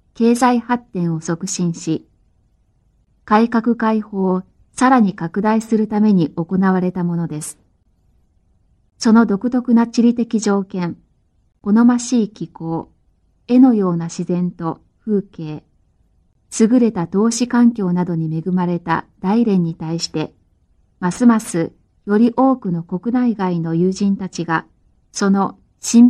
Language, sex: Chinese, female